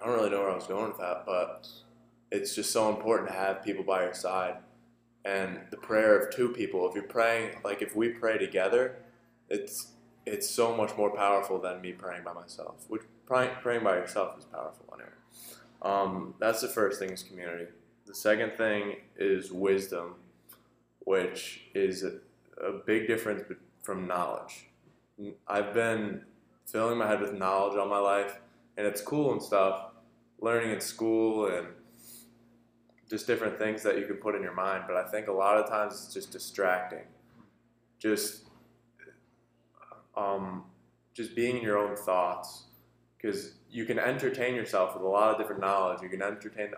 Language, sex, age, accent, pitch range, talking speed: English, male, 20-39, American, 100-120 Hz, 175 wpm